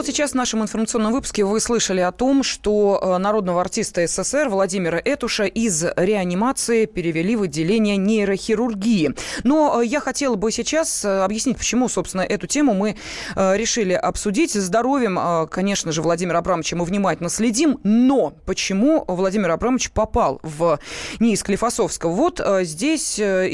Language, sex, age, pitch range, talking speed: Russian, female, 20-39, 185-255 Hz, 135 wpm